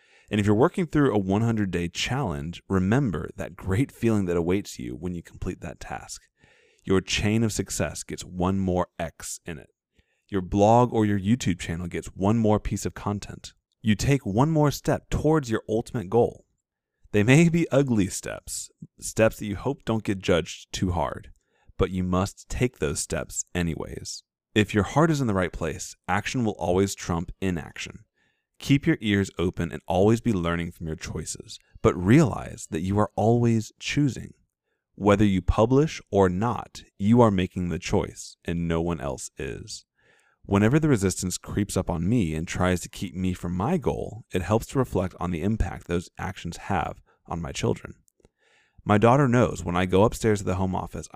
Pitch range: 90-115 Hz